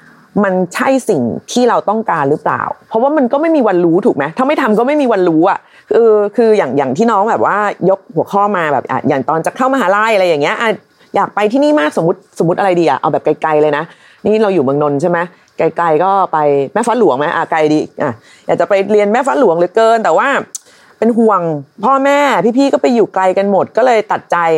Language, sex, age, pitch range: Thai, female, 30-49, 170-245 Hz